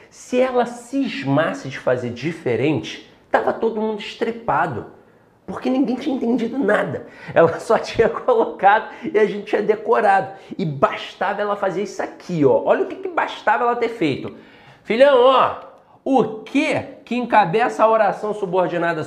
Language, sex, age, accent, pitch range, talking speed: Portuguese, male, 40-59, Brazilian, 175-240 Hz, 150 wpm